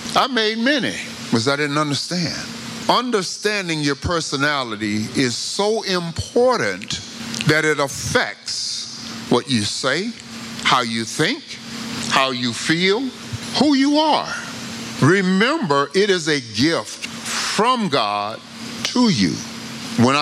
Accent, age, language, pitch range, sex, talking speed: American, 50-69, English, 120-185 Hz, male, 115 wpm